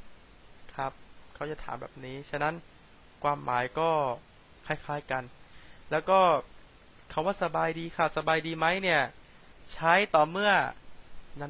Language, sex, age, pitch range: Chinese, male, 20-39, 145-175 Hz